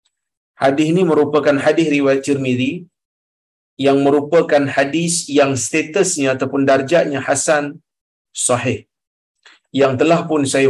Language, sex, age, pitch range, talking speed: Malayalam, male, 50-69, 130-170 Hz, 105 wpm